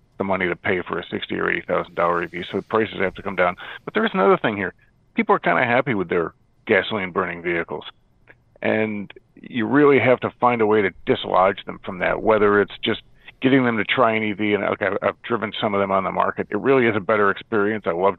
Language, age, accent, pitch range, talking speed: English, 40-59, American, 100-125 Hz, 245 wpm